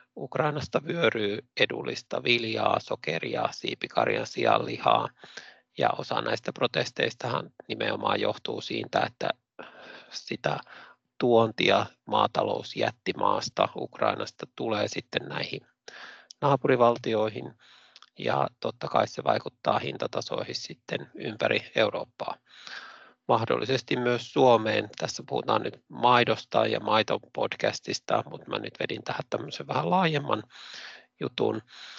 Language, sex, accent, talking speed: Finnish, male, native, 95 wpm